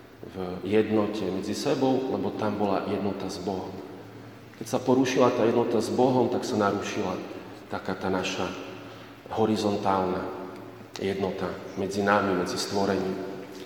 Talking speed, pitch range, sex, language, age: 125 wpm, 95-110 Hz, male, Slovak, 40-59